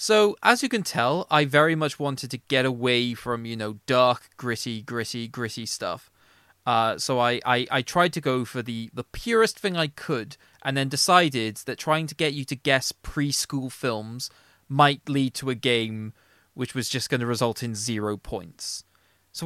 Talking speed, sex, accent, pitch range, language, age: 190 wpm, male, British, 115-150 Hz, English, 20-39